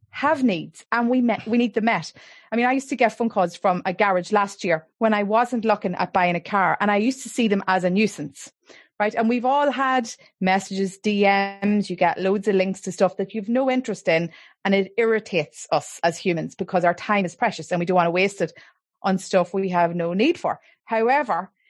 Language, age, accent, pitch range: English, 30-49, Irish, 190-245 Hz